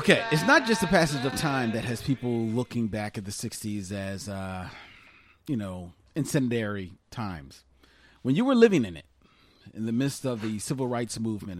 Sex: male